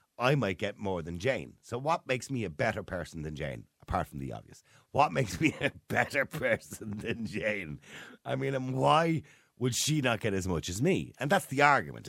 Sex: male